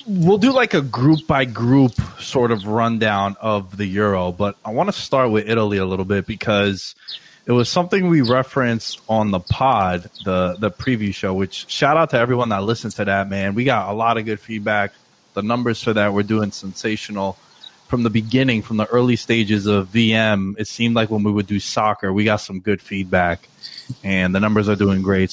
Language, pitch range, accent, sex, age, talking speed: English, 105-130 Hz, American, male, 20-39, 210 wpm